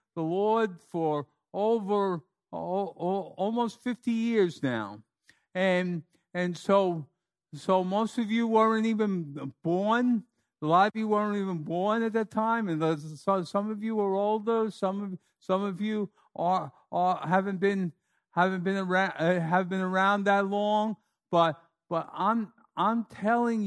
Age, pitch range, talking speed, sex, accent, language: 50-69, 155-205 Hz, 160 wpm, male, American, English